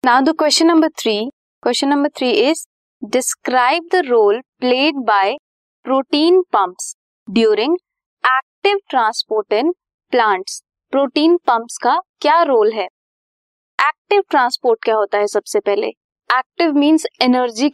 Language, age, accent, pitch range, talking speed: Hindi, 20-39, native, 230-315 Hz, 75 wpm